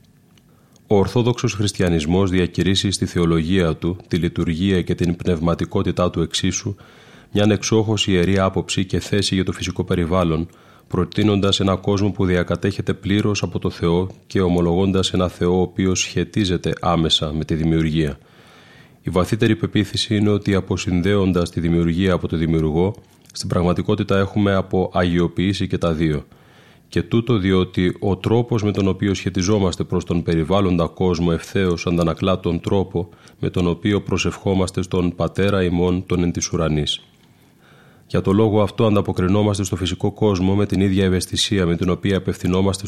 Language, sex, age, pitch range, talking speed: Greek, male, 30-49, 85-100 Hz, 145 wpm